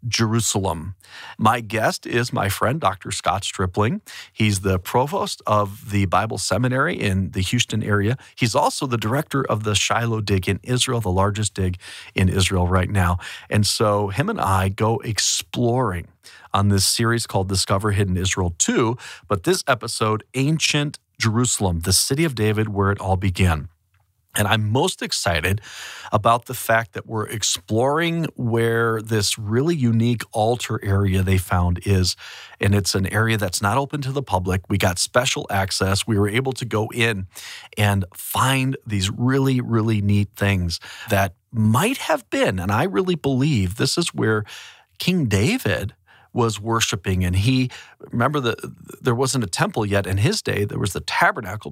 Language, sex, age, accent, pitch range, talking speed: English, male, 40-59, American, 95-125 Hz, 165 wpm